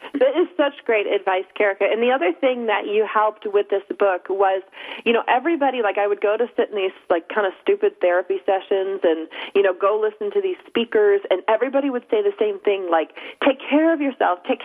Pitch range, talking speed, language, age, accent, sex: 195-255 Hz, 225 wpm, English, 40-59, American, female